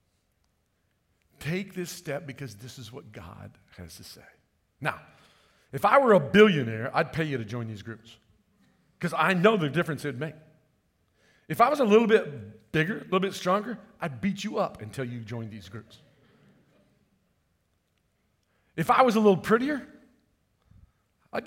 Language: English